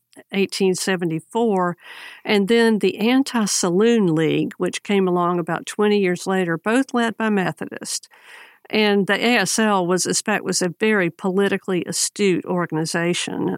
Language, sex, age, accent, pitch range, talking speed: English, female, 50-69, American, 175-205 Hz, 130 wpm